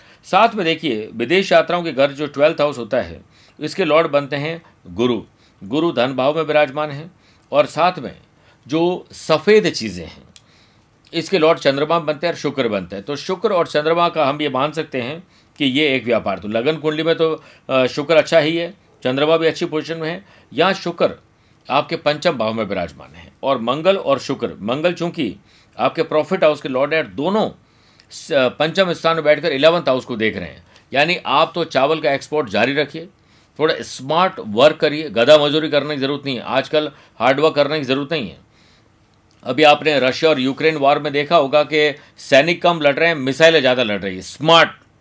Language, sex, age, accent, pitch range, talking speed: Hindi, male, 50-69, native, 130-165 Hz, 195 wpm